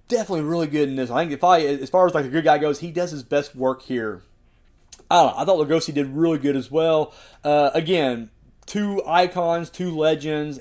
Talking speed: 225 wpm